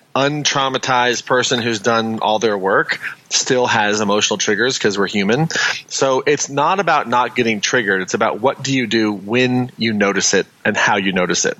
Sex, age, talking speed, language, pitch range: male, 30-49, 185 wpm, English, 110-135 Hz